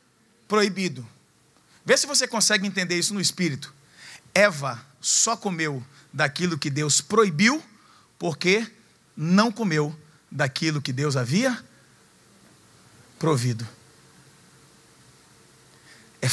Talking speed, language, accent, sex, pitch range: 90 wpm, Portuguese, Brazilian, male, 145-210 Hz